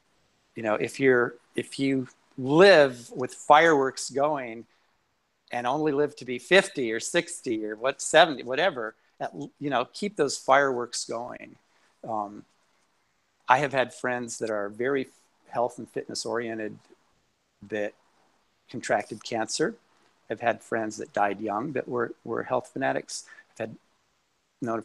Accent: American